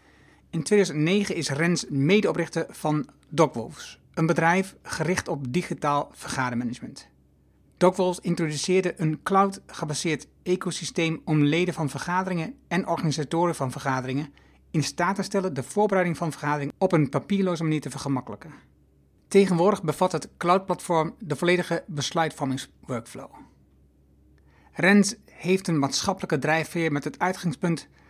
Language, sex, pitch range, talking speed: Dutch, male, 135-180 Hz, 115 wpm